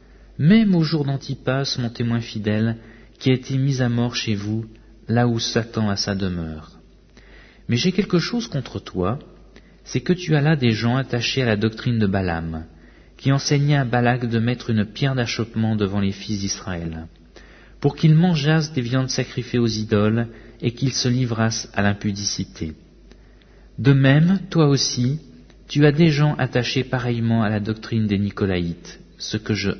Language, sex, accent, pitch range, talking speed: English, male, French, 100-135 Hz, 170 wpm